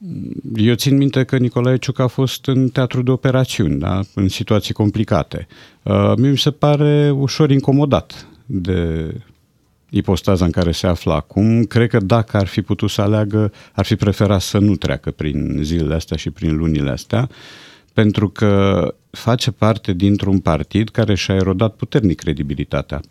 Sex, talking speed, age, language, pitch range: male, 160 wpm, 50-69, Romanian, 85-115 Hz